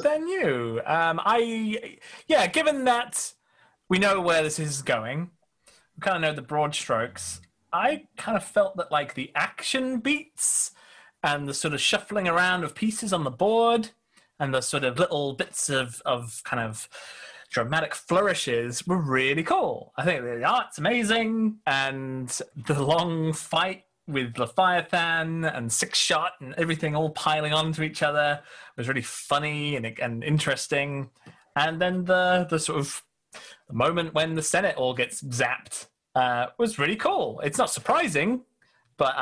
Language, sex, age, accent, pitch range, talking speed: English, male, 30-49, British, 130-185 Hz, 165 wpm